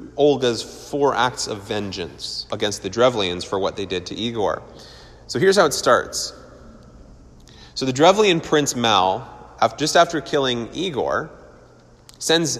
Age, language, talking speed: 30-49, English, 145 wpm